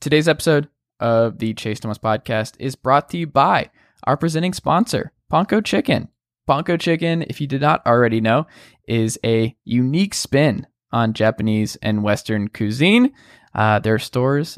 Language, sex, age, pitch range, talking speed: English, male, 20-39, 115-160 Hz, 155 wpm